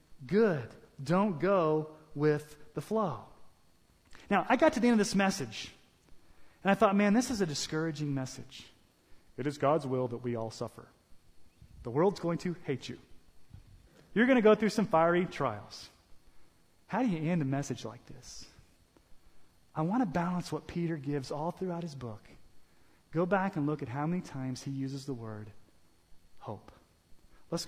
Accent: American